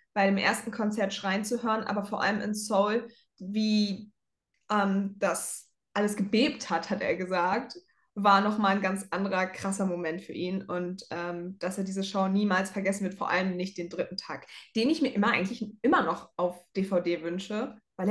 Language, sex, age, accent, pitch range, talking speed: German, female, 20-39, German, 190-230 Hz, 185 wpm